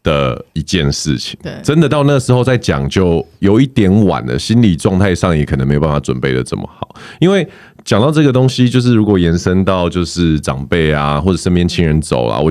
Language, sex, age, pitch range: Chinese, male, 20-39, 80-110 Hz